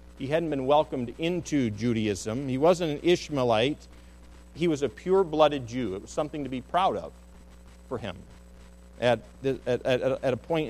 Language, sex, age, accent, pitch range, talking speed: English, male, 50-69, American, 110-175 Hz, 175 wpm